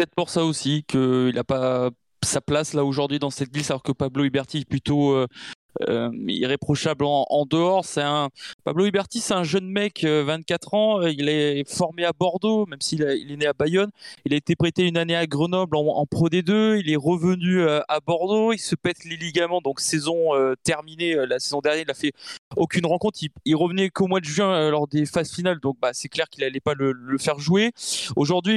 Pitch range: 145-180 Hz